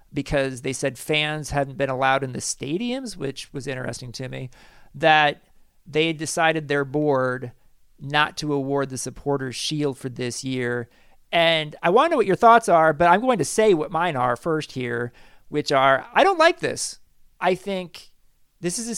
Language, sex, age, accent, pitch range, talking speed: English, male, 40-59, American, 140-185 Hz, 190 wpm